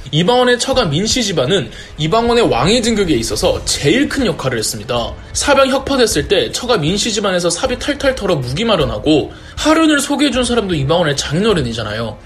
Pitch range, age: 165-260 Hz, 20-39